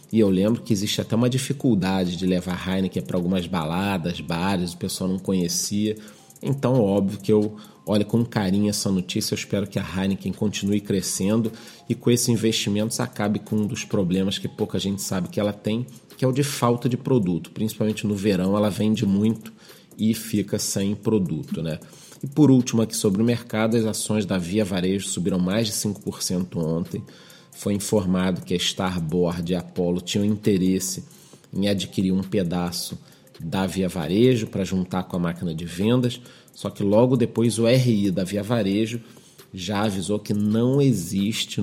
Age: 40-59